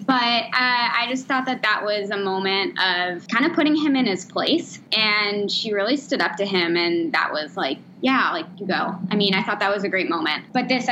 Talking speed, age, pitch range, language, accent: 240 wpm, 10-29, 185-230 Hz, English, American